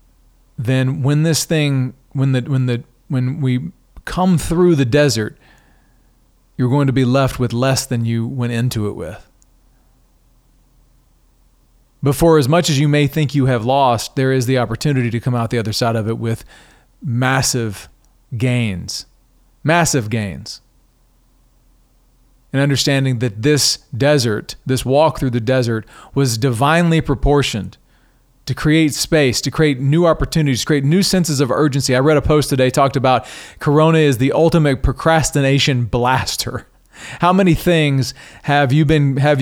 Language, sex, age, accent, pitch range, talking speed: English, male, 40-59, American, 125-150 Hz, 155 wpm